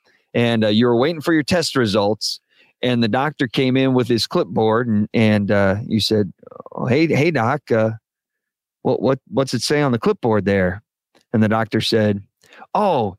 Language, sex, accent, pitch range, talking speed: English, male, American, 110-145 Hz, 185 wpm